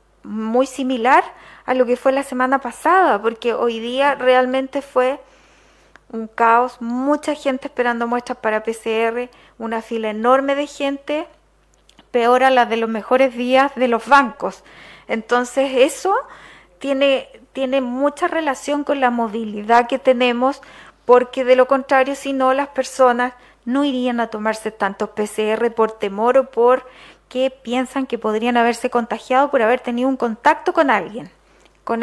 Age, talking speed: 40-59, 150 wpm